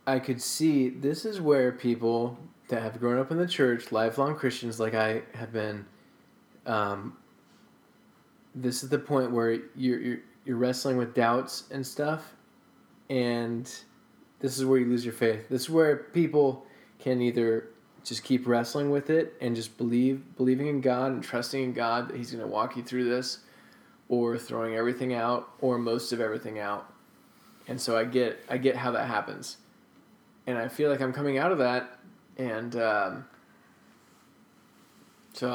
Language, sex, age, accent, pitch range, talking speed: English, male, 20-39, American, 120-135 Hz, 170 wpm